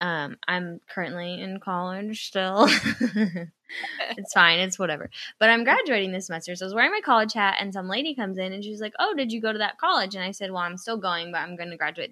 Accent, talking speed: American, 245 wpm